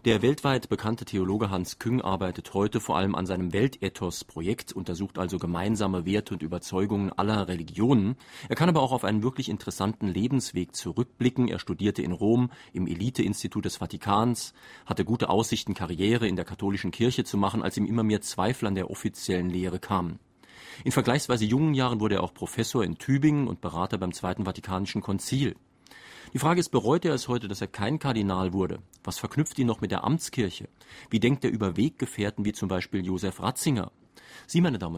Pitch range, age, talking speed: 90-120 Hz, 40-59, 185 wpm